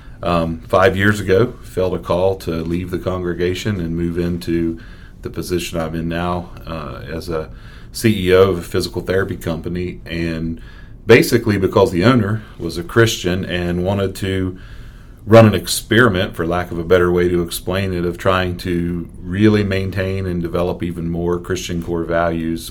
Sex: male